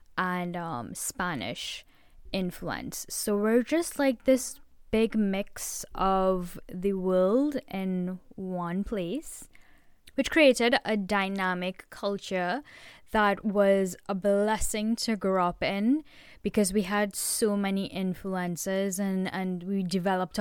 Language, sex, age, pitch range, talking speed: English, female, 10-29, 180-215 Hz, 120 wpm